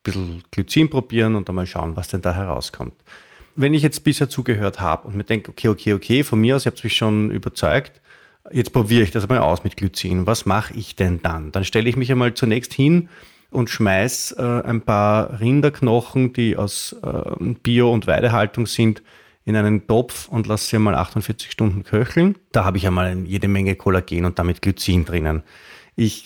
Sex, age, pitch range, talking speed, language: male, 30-49, 100-125 Hz, 200 wpm, German